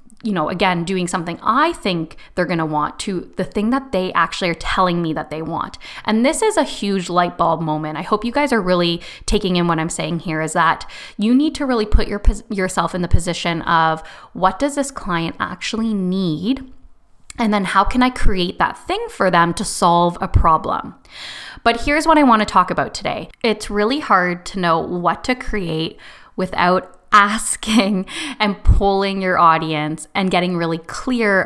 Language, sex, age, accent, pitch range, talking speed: English, female, 20-39, American, 170-215 Hz, 195 wpm